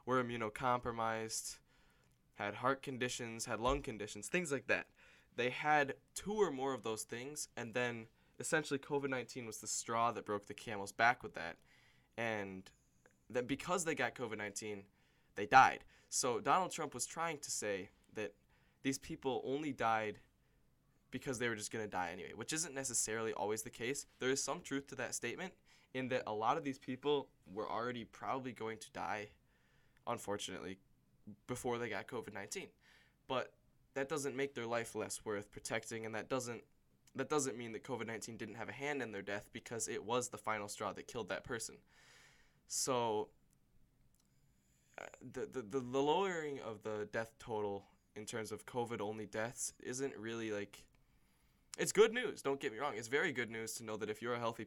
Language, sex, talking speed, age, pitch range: English, male, 180 wpm, 10-29, 105-135 Hz